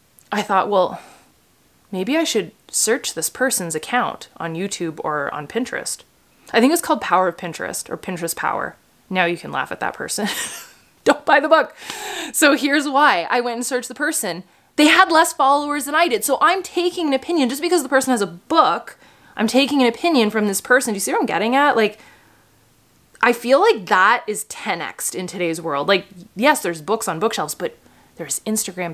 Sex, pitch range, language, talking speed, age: female, 205-295 Hz, English, 200 wpm, 20-39